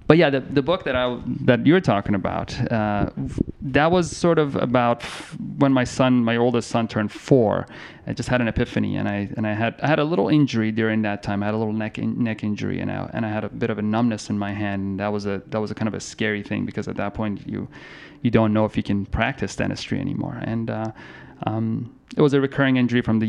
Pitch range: 105-120 Hz